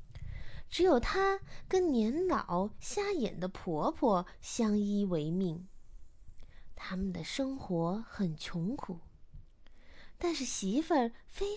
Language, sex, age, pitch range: Chinese, female, 20-39, 185-305 Hz